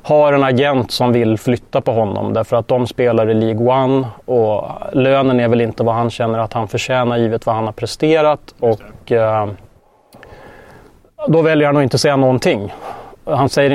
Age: 30-49